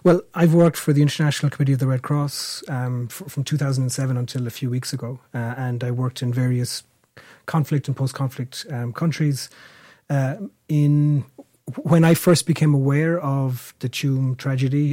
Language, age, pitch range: English, 30-49, 125-145 Hz